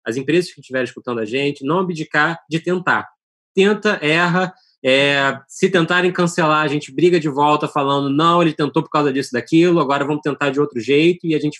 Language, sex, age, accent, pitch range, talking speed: Portuguese, male, 20-39, Brazilian, 135-165 Hz, 200 wpm